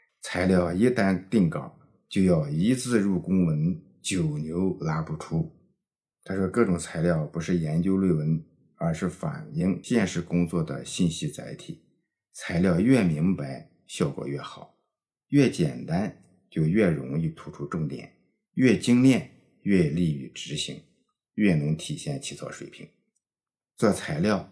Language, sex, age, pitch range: Chinese, male, 50-69, 80-130 Hz